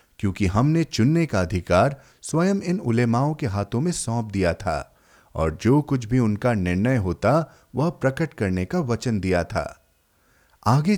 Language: Hindi